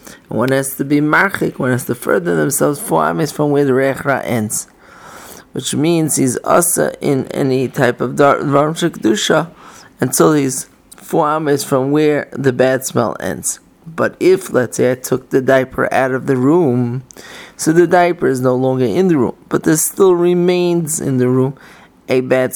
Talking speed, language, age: 180 wpm, English, 30-49